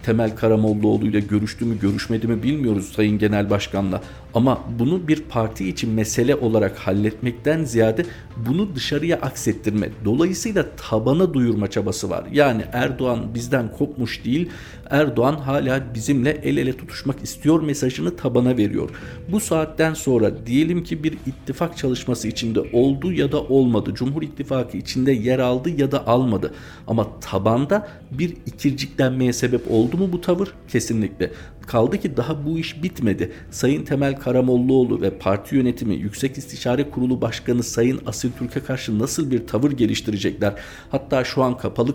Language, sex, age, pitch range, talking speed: Turkish, male, 50-69, 105-135 Hz, 145 wpm